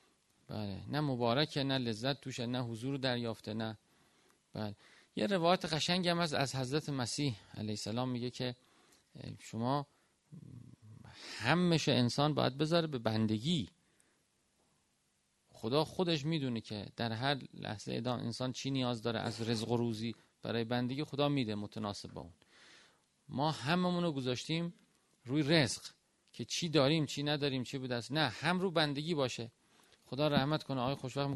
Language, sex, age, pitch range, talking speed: Persian, male, 40-59, 115-150 Hz, 145 wpm